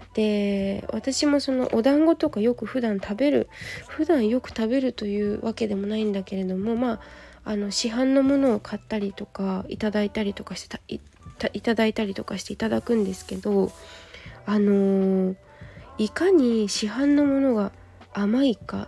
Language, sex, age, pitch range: Japanese, female, 20-39, 205-275 Hz